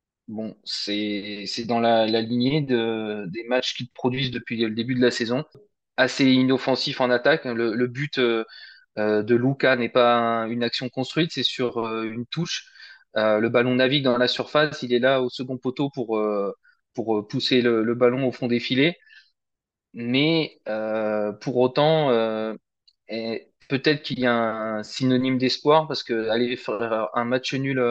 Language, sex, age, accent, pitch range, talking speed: French, male, 20-39, French, 115-135 Hz, 175 wpm